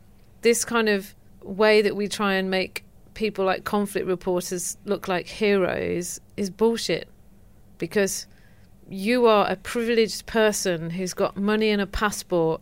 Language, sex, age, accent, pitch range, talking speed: English, female, 40-59, British, 175-205 Hz, 145 wpm